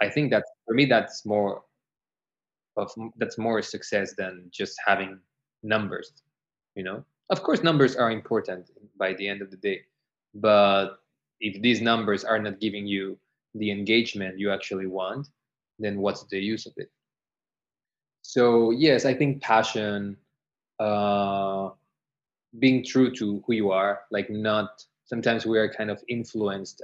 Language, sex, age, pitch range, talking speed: English, male, 20-39, 100-120 Hz, 150 wpm